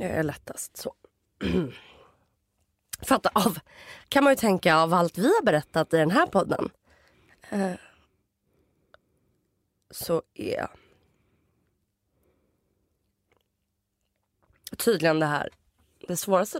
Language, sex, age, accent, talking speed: Swedish, female, 20-39, native, 95 wpm